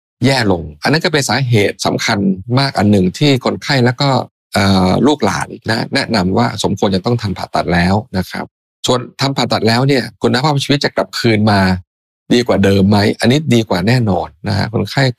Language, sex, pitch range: Thai, male, 95-130 Hz